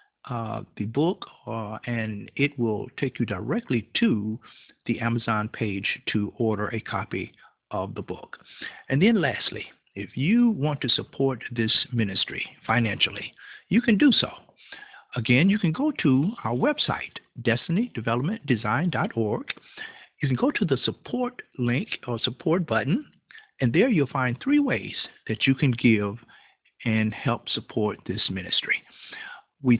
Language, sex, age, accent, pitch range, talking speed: English, male, 50-69, American, 110-160 Hz, 140 wpm